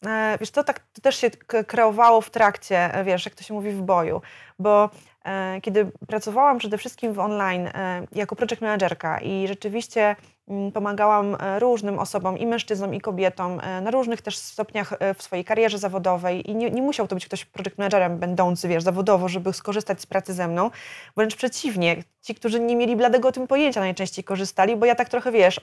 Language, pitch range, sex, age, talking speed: Polish, 190-240 Hz, female, 20-39, 180 wpm